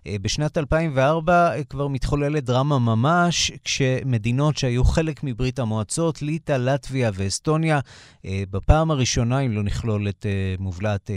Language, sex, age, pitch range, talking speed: Hebrew, male, 30-49, 110-150 Hz, 115 wpm